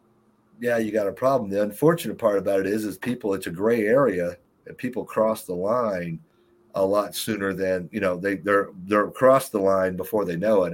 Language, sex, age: English, male, 50-69